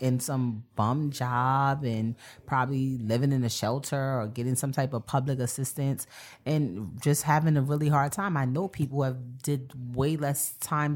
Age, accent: 30-49, American